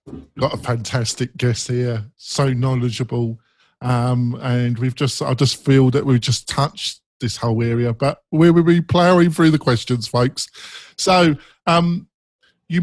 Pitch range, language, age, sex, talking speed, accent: 115-145 Hz, English, 50-69, male, 160 wpm, British